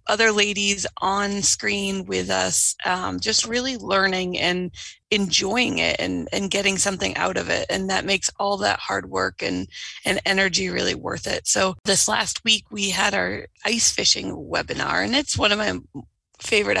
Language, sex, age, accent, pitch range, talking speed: English, female, 20-39, American, 195-220 Hz, 175 wpm